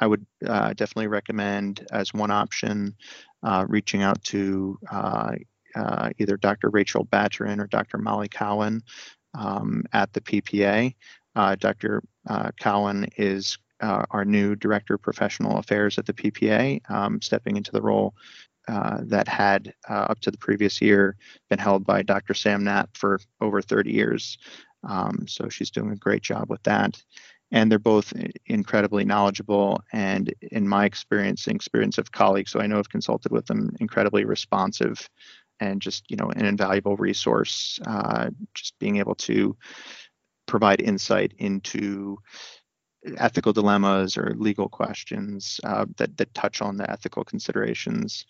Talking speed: 155 wpm